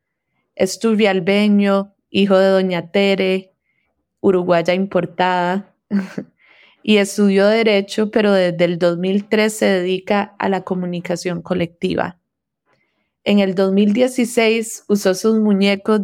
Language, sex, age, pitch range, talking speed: English, female, 30-49, 185-210 Hz, 95 wpm